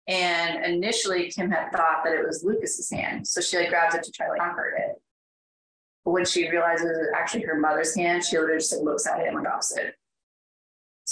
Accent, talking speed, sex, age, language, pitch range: American, 220 wpm, female, 20-39, English, 160-230 Hz